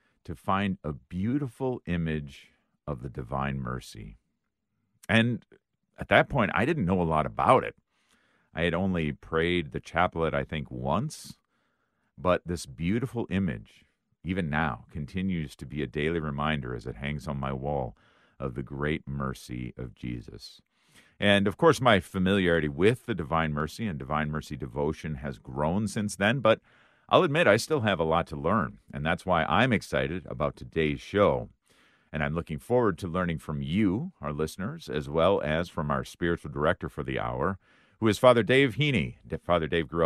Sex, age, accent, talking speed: male, 50-69, American, 175 wpm